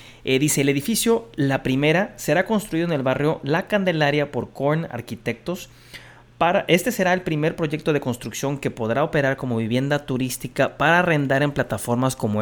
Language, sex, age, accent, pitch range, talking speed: Spanish, male, 30-49, Mexican, 120-155 Hz, 165 wpm